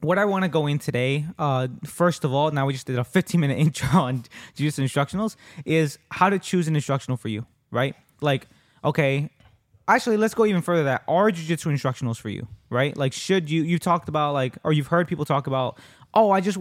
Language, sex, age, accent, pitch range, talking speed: English, male, 20-39, American, 130-170 Hz, 220 wpm